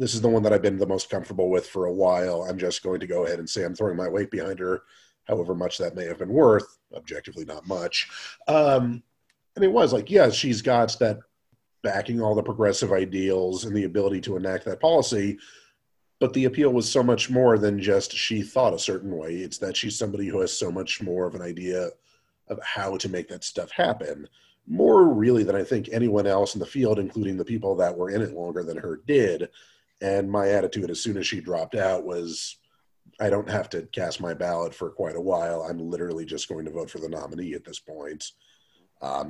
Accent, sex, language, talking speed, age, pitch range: American, male, English, 225 wpm, 40-59, 90-120 Hz